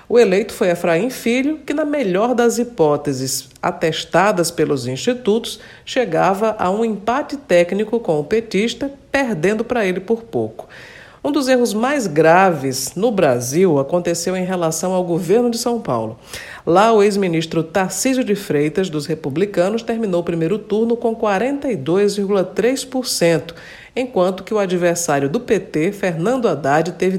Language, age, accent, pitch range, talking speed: Portuguese, 50-69, Brazilian, 165-230 Hz, 140 wpm